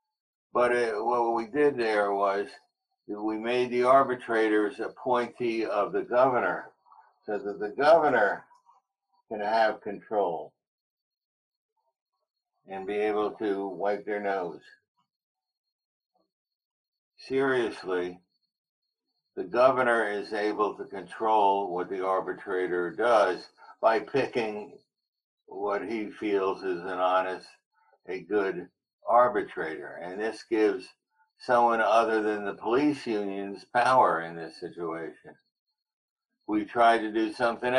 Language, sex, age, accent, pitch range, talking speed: English, male, 60-79, American, 100-145 Hz, 110 wpm